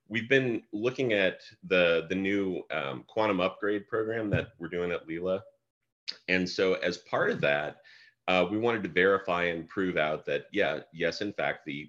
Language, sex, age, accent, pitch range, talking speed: English, male, 30-49, American, 80-95 Hz, 180 wpm